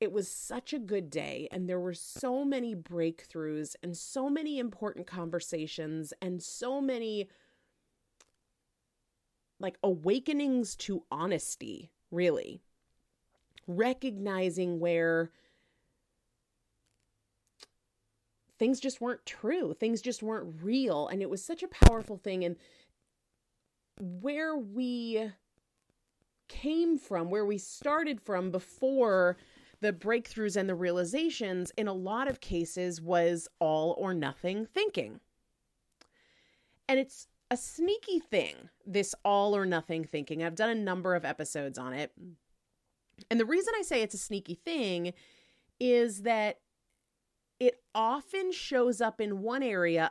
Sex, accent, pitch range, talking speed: female, American, 170-245 Hz, 125 wpm